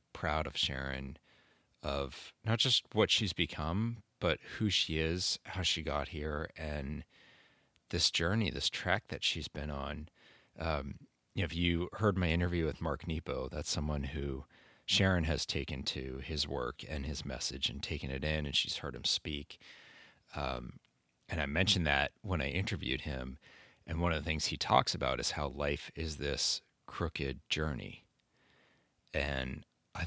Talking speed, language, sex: 165 wpm, English, male